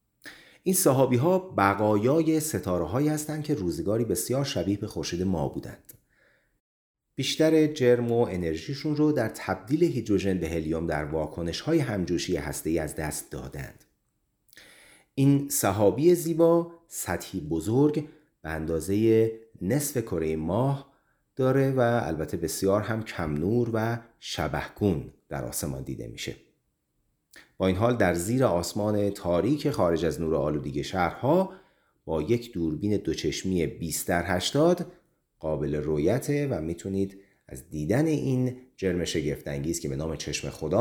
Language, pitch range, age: Persian, 85-140 Hz, 30-49